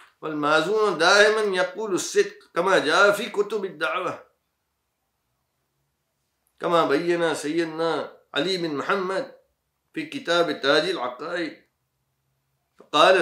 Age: 50-69